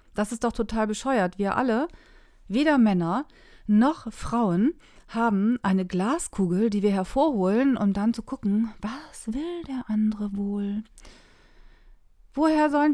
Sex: female